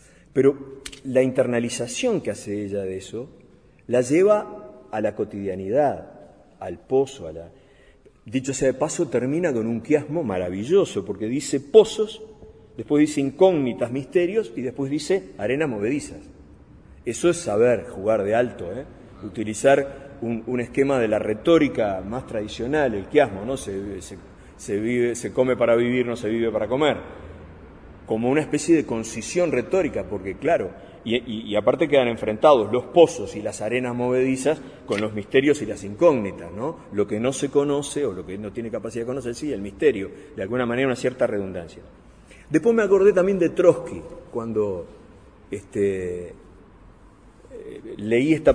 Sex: male